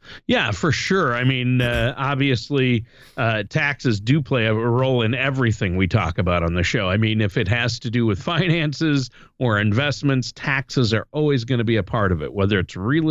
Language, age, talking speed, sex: English, 50-69, 205 wpm, male